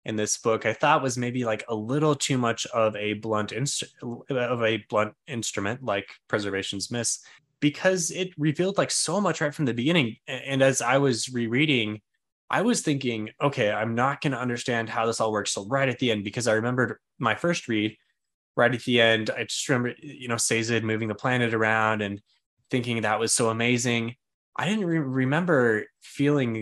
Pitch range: 110-150 Hz